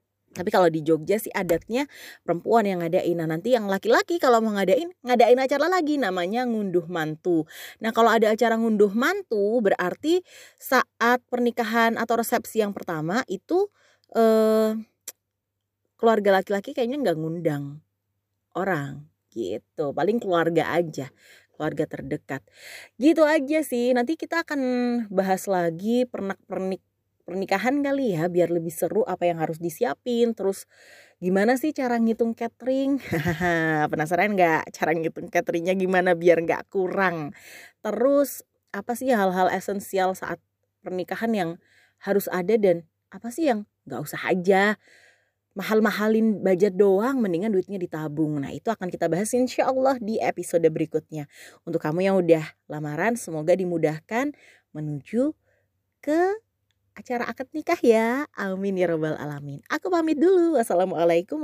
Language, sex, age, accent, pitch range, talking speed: English, female, 20-39, Indonesian, 170-240 Hz, 135 wpm